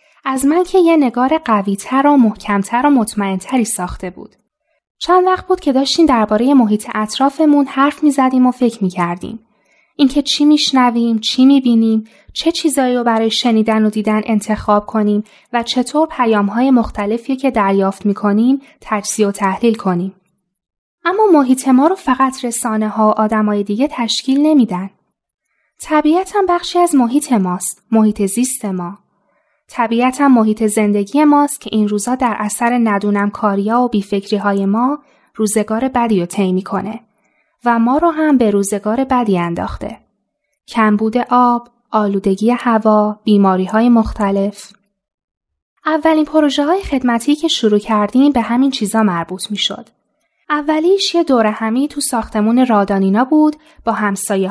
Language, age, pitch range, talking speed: Persian, 10-29, 210-275 Hz, 140 wpm